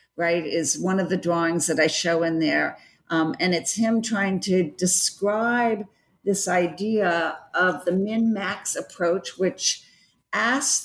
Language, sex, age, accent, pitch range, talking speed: English, female, 50-69, American, 180-230 Hz, 145 wpm